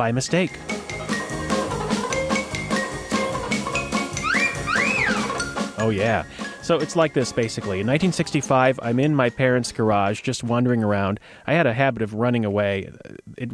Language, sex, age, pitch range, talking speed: English, male, 30-49, 110-140 Hz, 120 wpm